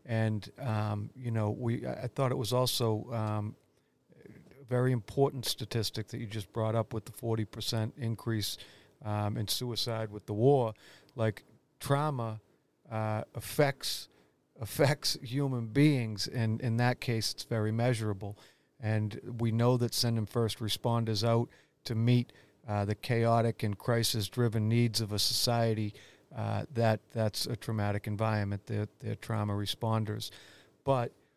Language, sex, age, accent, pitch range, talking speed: English, male, 50-69, American, 110-125 Hz, 145 wpm